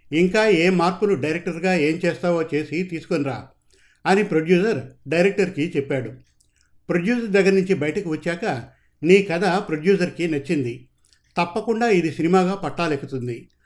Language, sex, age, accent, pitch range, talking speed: Telugu, male, 50-69, native, 145-190 Hz, 115 wpm